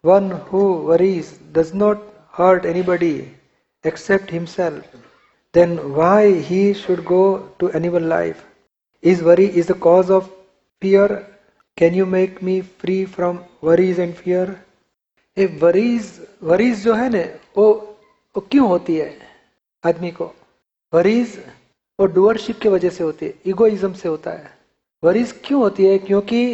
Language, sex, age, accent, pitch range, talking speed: Hindi, male, 40-59, native, 185-215 Hz, 140 wpm